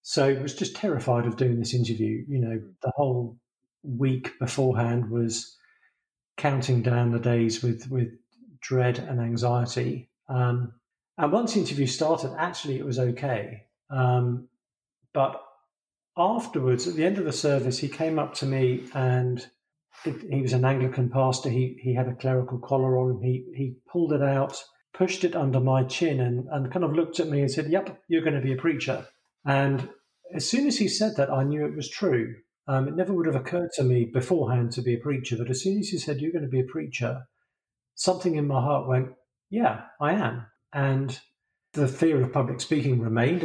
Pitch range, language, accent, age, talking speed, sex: 125-150 Hz, English, British, 50-69, 195 wpm, male